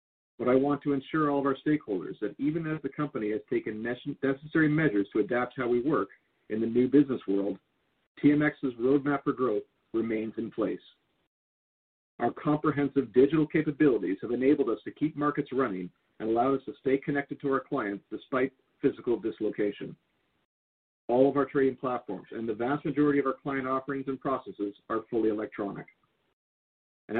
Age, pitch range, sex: 50-69, 115-145 Hz, male